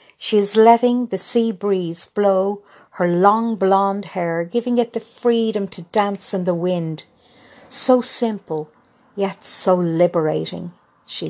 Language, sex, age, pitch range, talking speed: English, female, 60-79, 180-240 Hz, 140 wpm